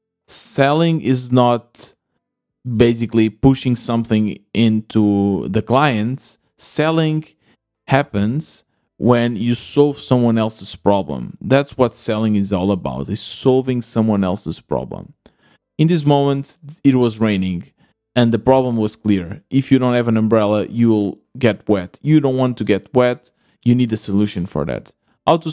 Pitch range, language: 105-135 Hz, English